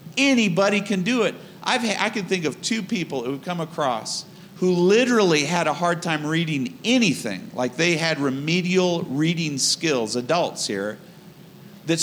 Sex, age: male, 50-69